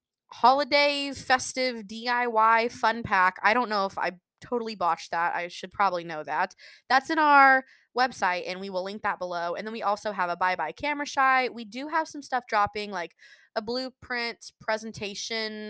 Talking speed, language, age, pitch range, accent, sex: 185 wpm, English, 20-39, 195-275 Hz, American, female